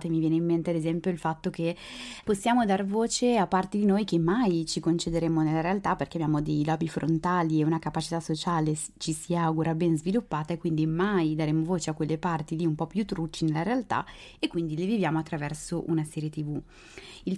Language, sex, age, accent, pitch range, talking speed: Italian, female, 20-39, native, 160-190 Hz, 205 wpm